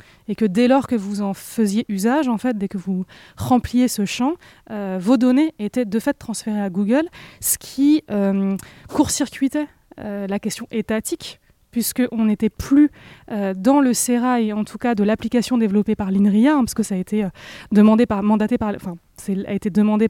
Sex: female